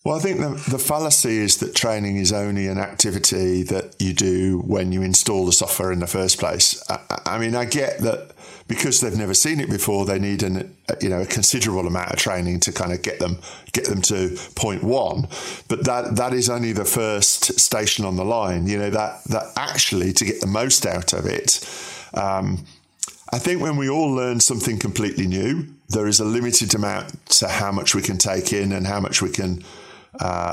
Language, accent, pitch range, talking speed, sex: English, British, 95-125 Hz, 215 wpm, male